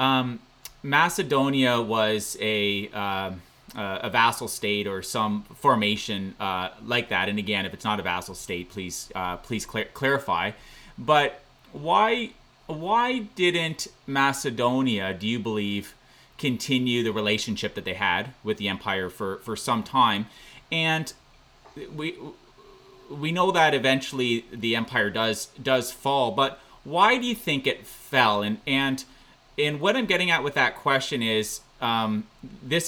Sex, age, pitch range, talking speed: male, 30-49, 105-140 Hz, 145 wpm